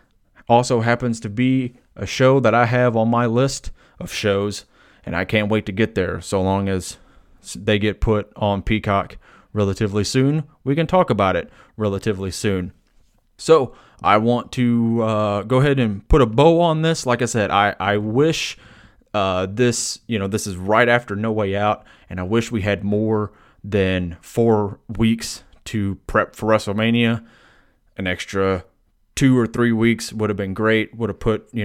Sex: male